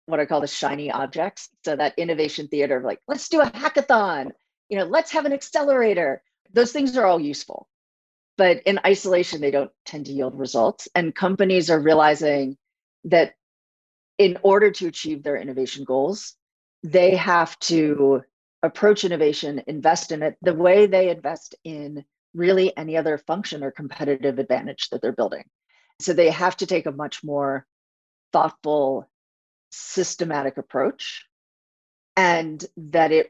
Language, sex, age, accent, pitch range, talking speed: English, female, 40-59, American, 140-175 Hz, 155 wpm